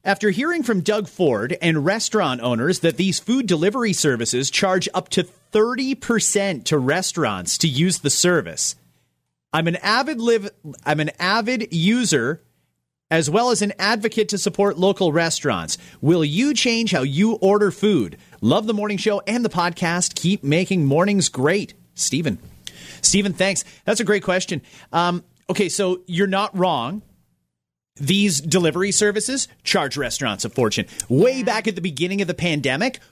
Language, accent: English, American